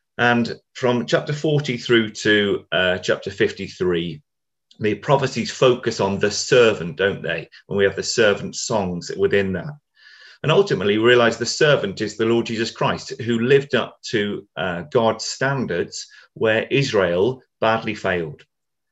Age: 40-59